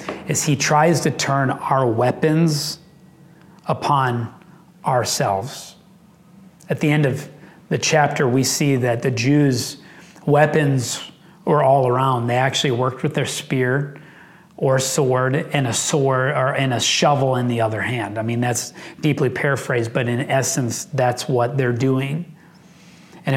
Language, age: English, 30-49